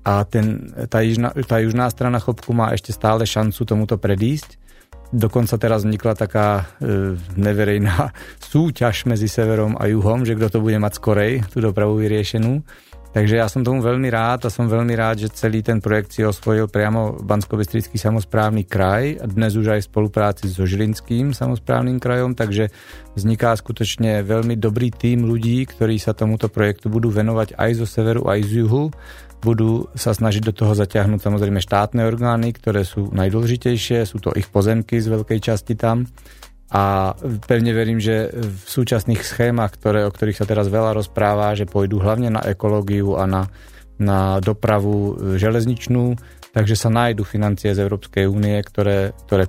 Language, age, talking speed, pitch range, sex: Slovak, 30-49, 160 wpm, 105-115 Hz, male